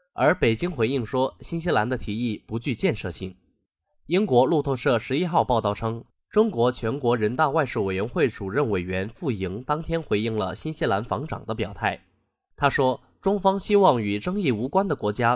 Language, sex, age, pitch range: Chinese, male, 20-39, 105-165 Hz